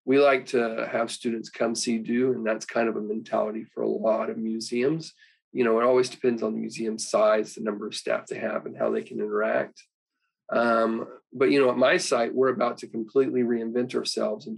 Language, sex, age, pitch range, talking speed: English, male, 40-59, 115-130 Hz, 220 wpm